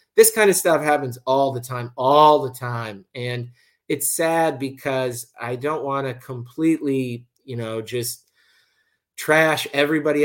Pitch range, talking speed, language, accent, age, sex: 115-135 Hz, 145 wpm, English, American, 30-49, male